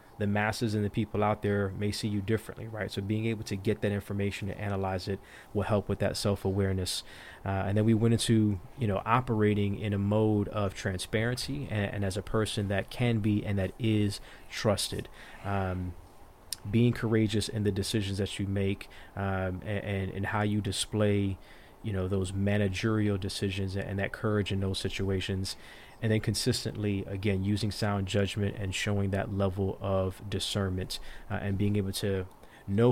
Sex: male